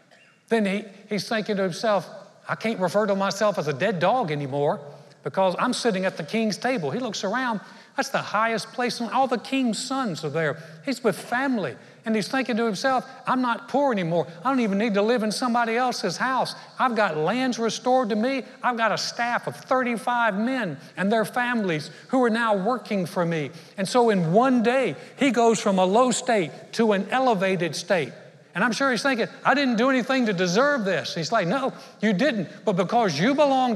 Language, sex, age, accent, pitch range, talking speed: English, male, 60-79, American, 175-240 Hz, 205 wpm